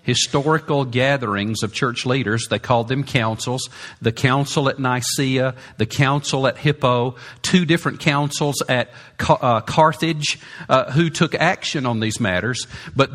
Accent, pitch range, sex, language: American, 130-180 Hz, male, English